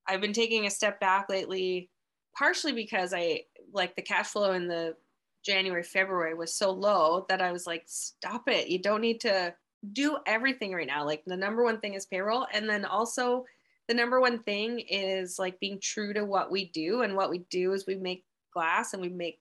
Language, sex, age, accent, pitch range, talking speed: English, female, 20-39, American, 185-220 Hz, 210 wpm